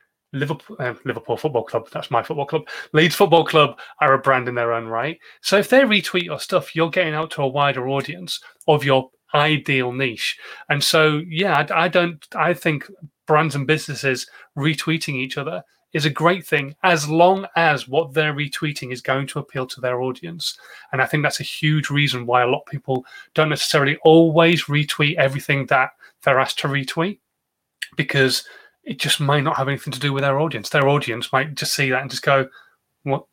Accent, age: British, 30-49